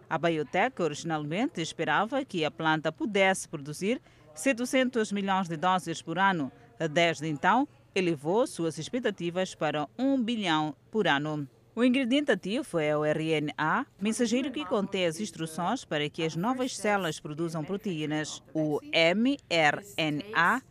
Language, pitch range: Portuguese, 155-215 Hz